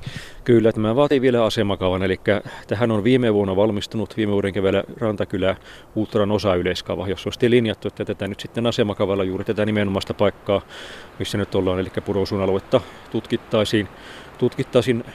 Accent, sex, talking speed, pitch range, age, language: native, male, 140 wpm, 95-115 Hz, 30-49, Finnish